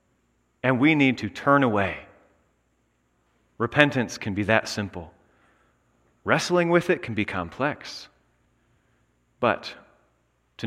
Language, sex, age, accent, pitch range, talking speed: English, male, 30-49, American, 105-145 Hz, 105 wpm